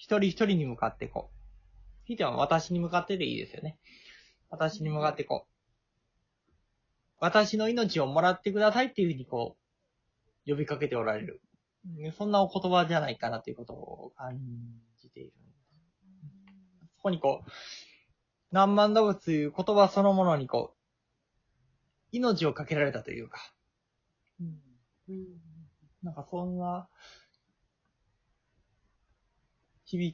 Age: 20-39